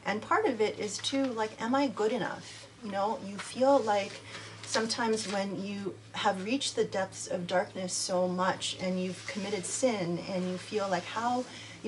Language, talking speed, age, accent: English, 185 wpm, 30-49, American